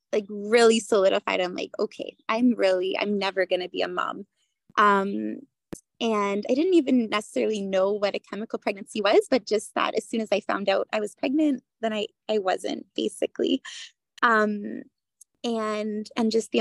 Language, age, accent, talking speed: English, 20-39, American, 175 wpm